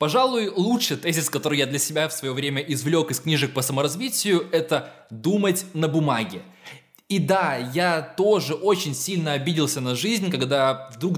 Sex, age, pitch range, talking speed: male, 20-39, 135-185 Hz, 160 wpm